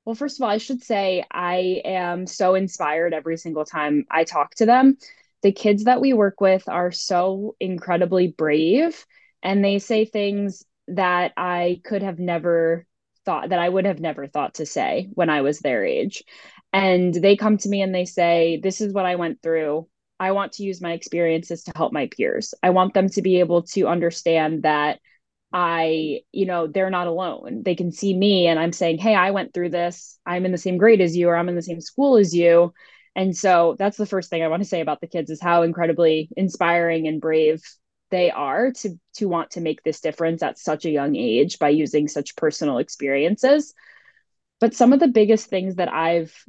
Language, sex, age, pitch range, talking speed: English, female, 10-29, 170-200 Hz, 210 wpm